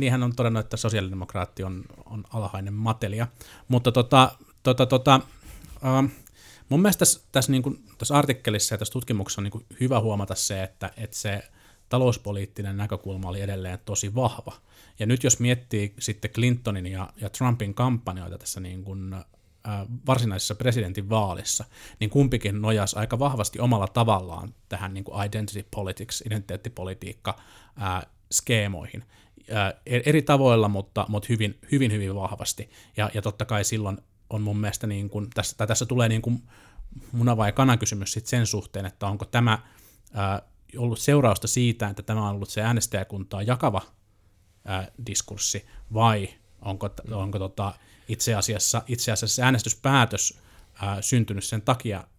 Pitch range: 100-120 Hz